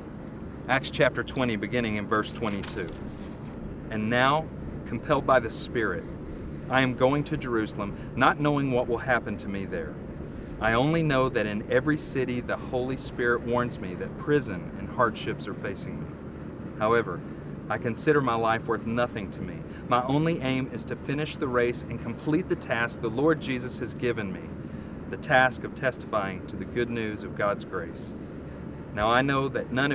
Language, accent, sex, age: English, American, male, 40-59